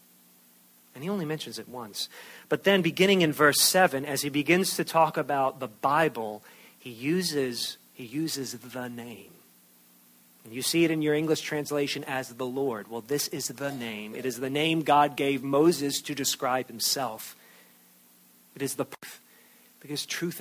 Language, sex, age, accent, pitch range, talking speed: English, male, 40-59, American, 115-160 Hz, 170 wpm